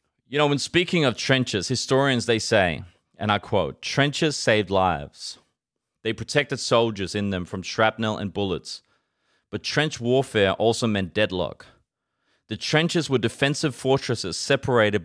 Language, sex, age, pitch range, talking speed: English, male, 30-49, 100-130 Hz, 145 wpm